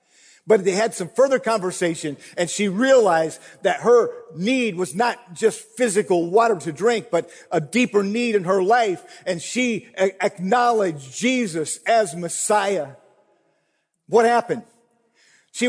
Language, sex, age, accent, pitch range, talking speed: English, male, 50-69, American, 150-240 Hz, 135 wpm